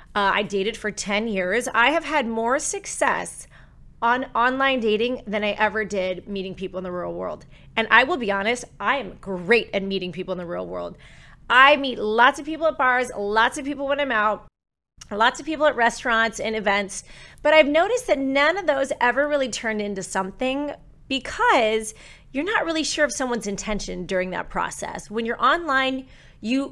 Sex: female